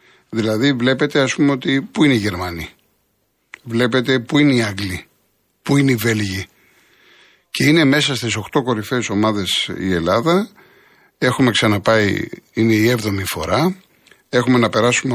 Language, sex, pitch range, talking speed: Greek, male, 100-130 Hz, 145 wpm